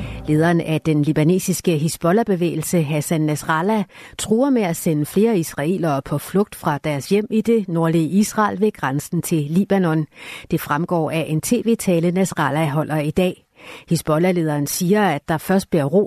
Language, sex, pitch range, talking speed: Danish, female, 155-200 Hz, 155 wpm